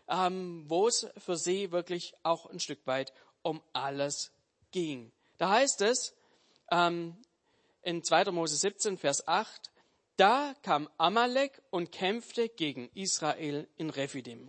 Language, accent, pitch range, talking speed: German, German, 160-210 Hz, 125 wpm